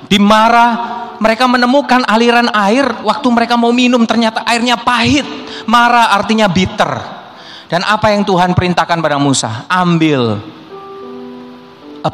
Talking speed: 120 wpm